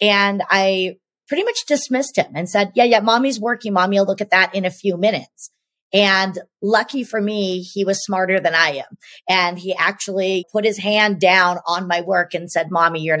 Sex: female